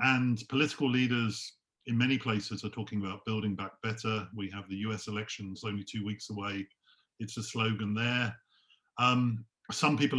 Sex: male